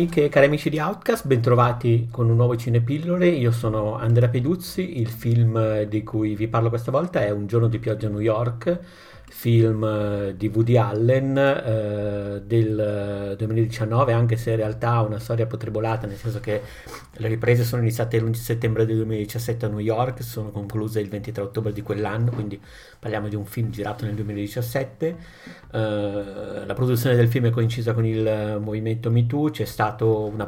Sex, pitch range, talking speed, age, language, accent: male, 105-120 Hz, 175 wpm, 50-69, Italian, native